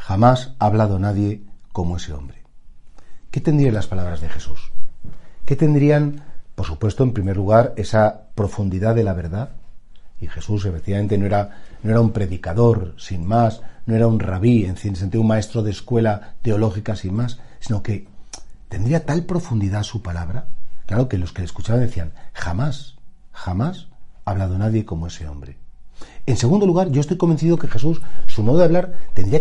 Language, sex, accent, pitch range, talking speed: Spanish, male, Spanish, 95-125 Hz, 175 wpm